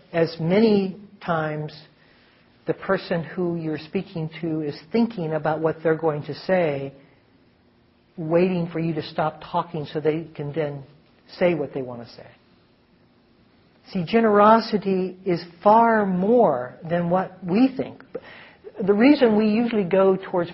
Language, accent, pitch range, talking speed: English, American, 160-200 Hz, 140 wpm